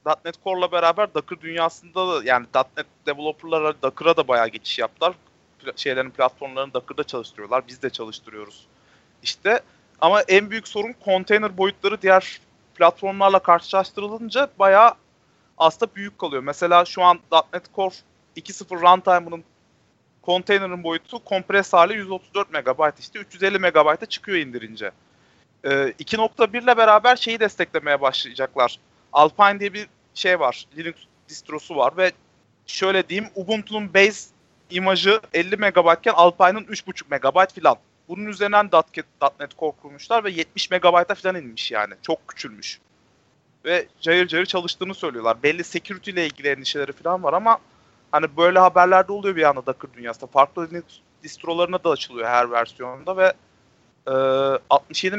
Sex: male